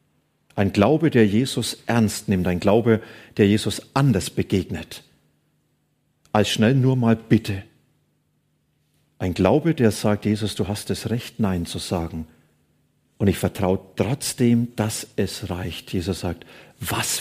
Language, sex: German, male